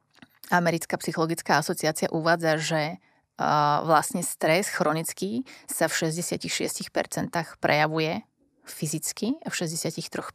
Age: 30-49